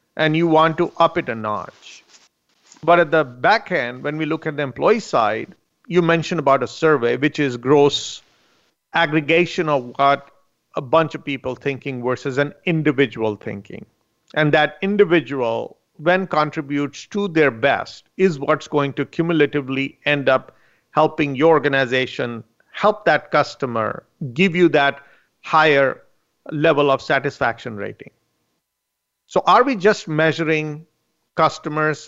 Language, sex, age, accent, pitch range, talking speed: English, male, 50-69, Indian, 140-165 Hz, 140 wpm